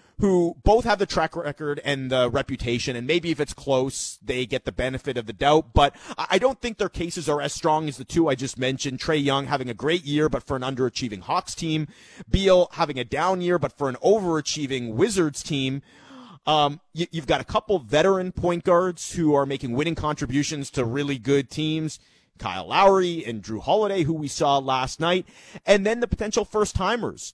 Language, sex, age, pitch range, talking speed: English, male, 30-49, 135-175 Hz, 200 wpm